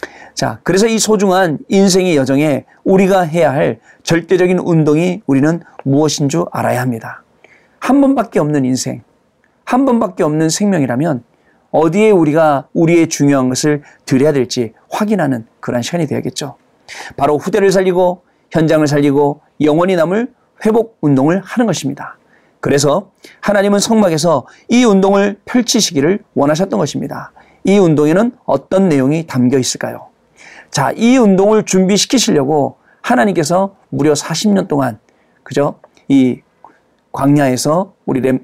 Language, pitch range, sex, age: Korean, 145-200 Hz, male, 40-59